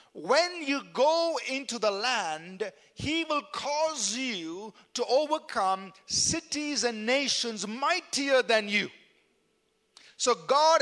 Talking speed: 110 wpm